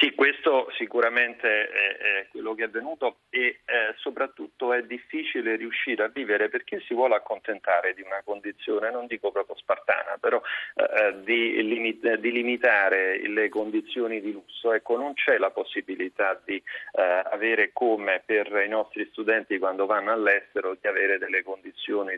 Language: Italian